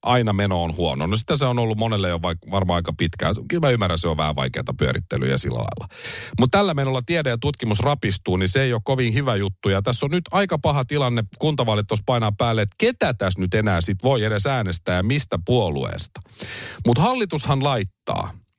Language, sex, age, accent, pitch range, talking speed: Finnish, male, 40-59, native, 95-140 Hz, 210 wpm